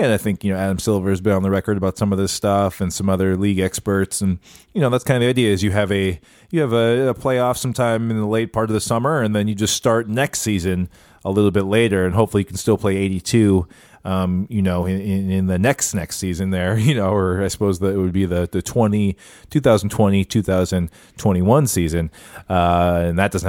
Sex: male